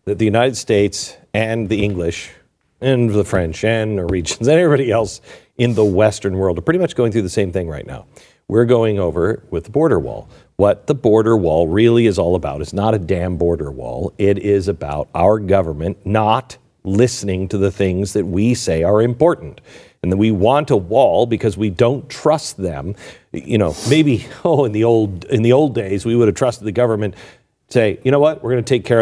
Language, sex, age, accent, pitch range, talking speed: English, male, 50-69, American, 100-125 Hz, 210 wpm